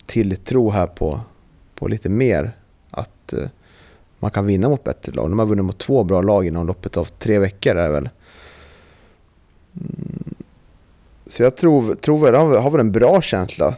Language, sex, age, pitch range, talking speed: Swedish, male, 30-49, 95-115 Hz, 175 wpm